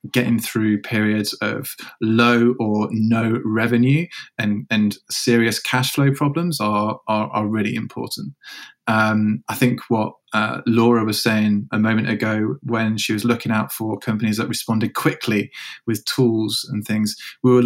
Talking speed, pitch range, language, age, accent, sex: 155 wpm, 110-120 Hz, English, 20-39, British, male